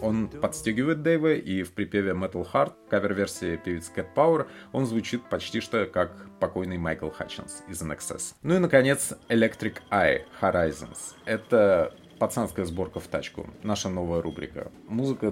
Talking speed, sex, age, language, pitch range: 150 wpm, male, 30-49, Russian, 90-115 Hz